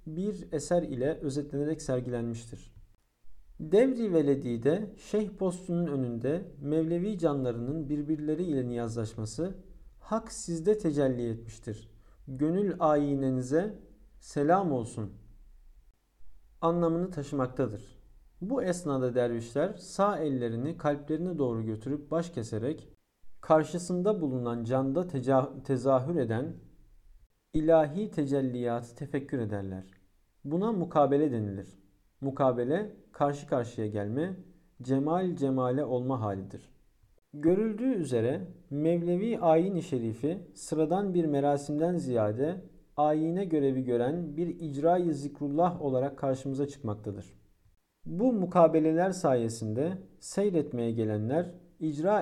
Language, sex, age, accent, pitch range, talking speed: Turkish, male, 50-69, native, 120-170 Hz, 90 wpm